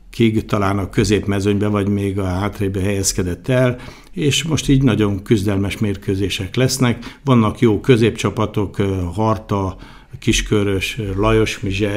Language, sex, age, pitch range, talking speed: Hungarian, male, 60-79, 100-120 Hz, 120 wpm